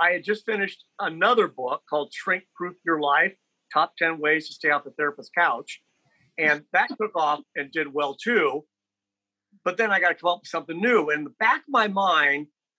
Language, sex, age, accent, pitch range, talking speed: English, male, 50-69, American, 150-210 Hz, 205 wpm